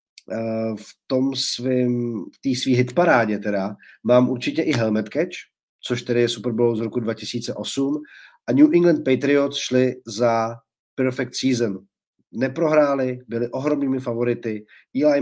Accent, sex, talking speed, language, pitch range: native, male, 125 wpm, Czech, 110-130 Hz